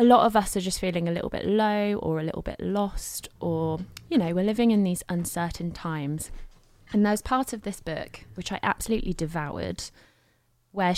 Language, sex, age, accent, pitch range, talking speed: English, female, 20-39, British, 160-205 Hz, 195 wpm